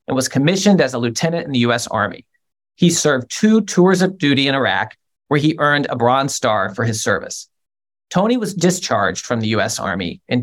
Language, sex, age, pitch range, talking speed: English, male, 40-59, 125-165 Hz, 200 wpm